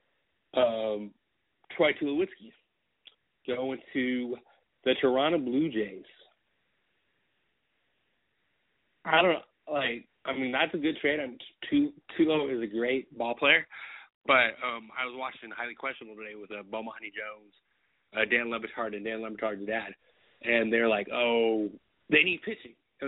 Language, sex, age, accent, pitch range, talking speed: English, male, 30-49, American, 115-150 Hz, 140 wpm